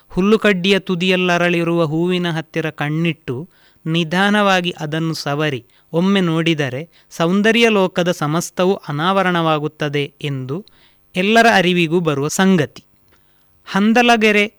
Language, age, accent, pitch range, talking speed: Kannada, 30-49, native, 150-185 Hz, 80 wpm